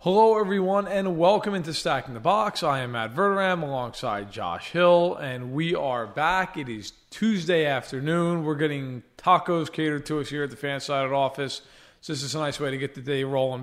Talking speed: 200 wpm